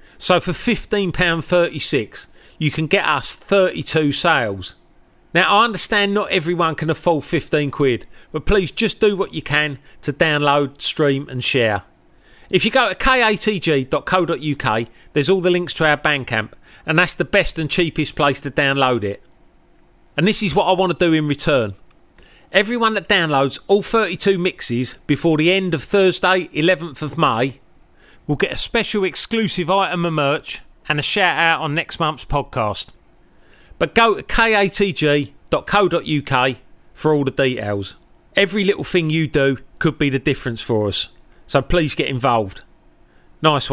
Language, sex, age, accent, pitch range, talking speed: English, male, 40-59, British, 135-185 Hz, 160 wpm